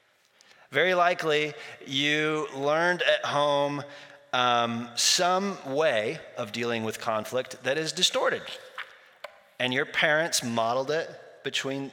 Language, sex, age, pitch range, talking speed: English, male, 30-49, 115-150 Hz, 110 wpm